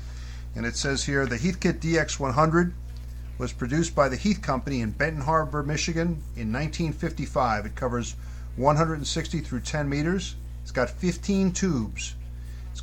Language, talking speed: English, 140 wpm